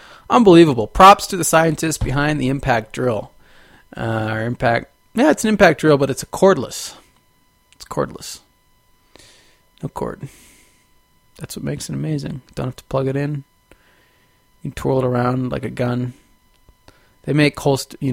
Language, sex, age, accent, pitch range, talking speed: English, male, 30-49, American, 125-170 Hz, 160 wpm